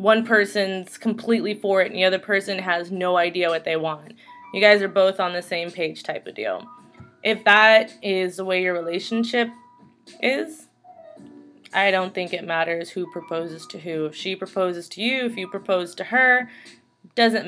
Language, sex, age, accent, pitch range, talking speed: English, female, 20-39, American, 175-220 Hz, 185 wpm